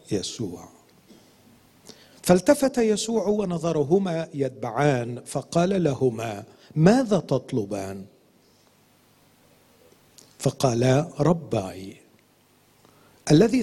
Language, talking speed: Arabic, 55 wpm